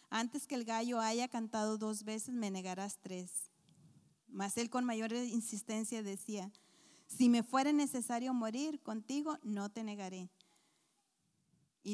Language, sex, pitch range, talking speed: Spanish, female, 210-255 Hz, 135 wpm